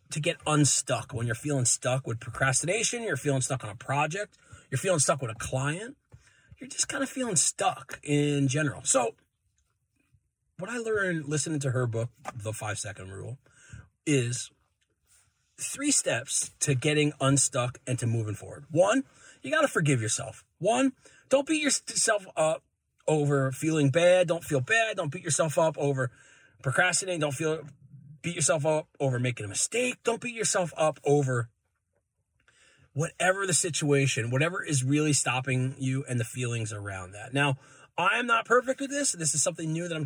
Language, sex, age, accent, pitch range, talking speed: English, male, 30-49, American, 130-180 Hz, 170 wpm